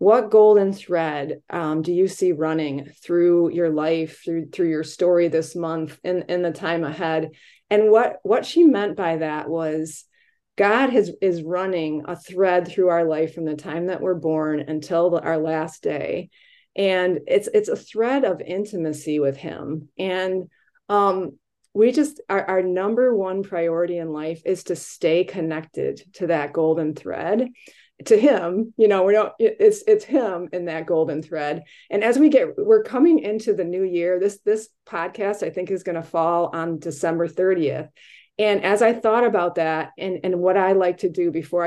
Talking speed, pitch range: 185 wpm, 165-205 Hz